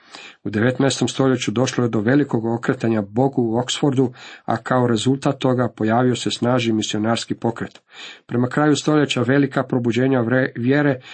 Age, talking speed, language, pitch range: 50-69, 140 wpm, Croatian, 110-125 Hz